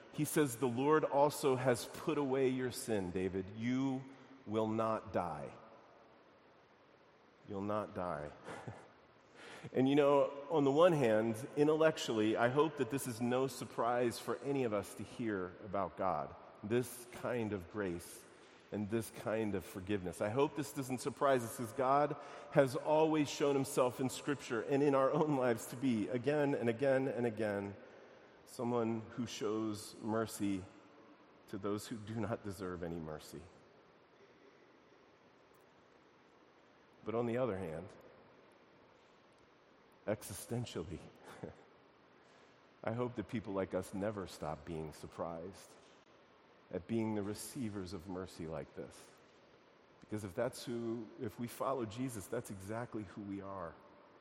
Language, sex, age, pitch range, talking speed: English, male, 40-59, 105-135 Hz, 140 wpm